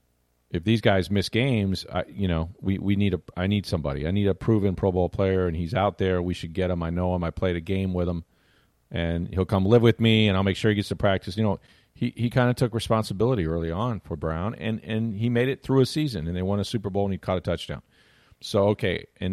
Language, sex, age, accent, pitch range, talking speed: English, male, 40-59, American, 85-110 Hz, 270 wpm